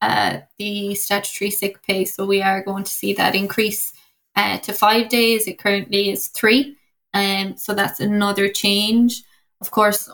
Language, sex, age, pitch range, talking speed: English, female, 10-29, 200-215 Hz, 165 wpm